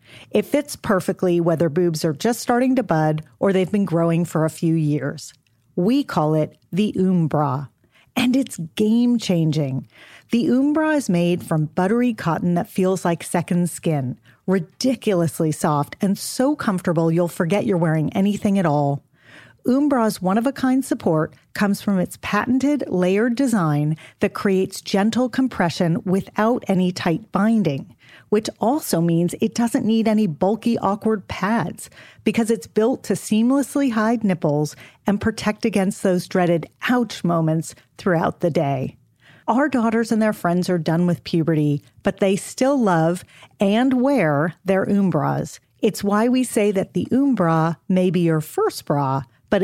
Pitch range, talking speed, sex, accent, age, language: 160-220 Hz, 150 wpm, female, American, 40-59, English